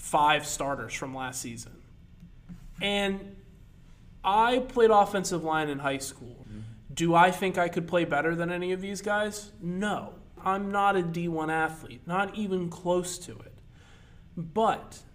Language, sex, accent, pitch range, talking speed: English, male, American, 145-185 Hz, 145 wpm